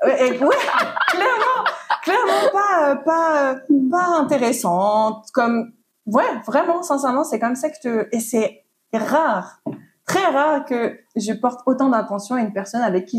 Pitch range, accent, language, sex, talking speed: 200-260 Hz, French, French, female, 145 wpm